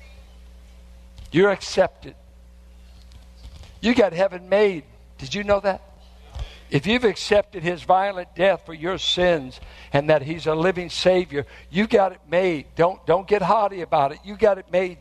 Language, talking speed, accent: English, 155 wpm, American